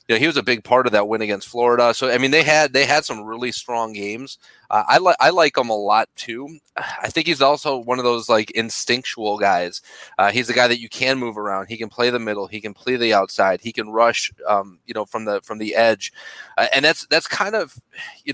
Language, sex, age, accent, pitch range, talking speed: English, male, 30-49, American, 105-125 Hz, 260 wpm